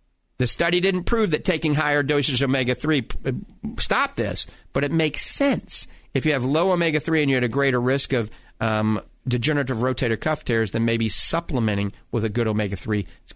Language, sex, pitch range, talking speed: English, male, 115-155 Hz, 195 wpm